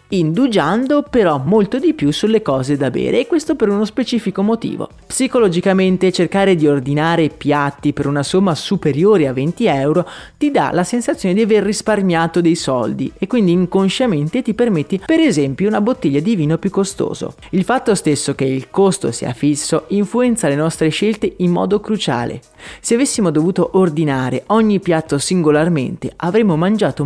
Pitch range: 150-210 Hz